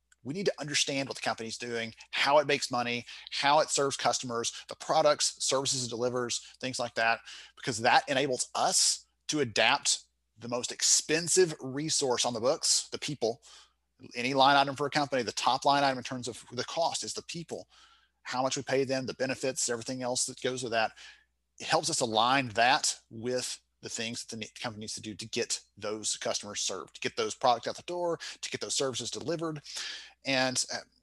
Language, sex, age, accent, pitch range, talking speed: English, male, 30-49, American, 115-135 Hz, 200 wpm